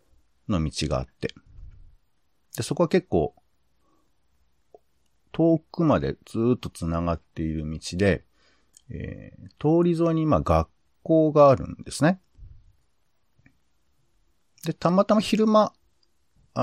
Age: 50-69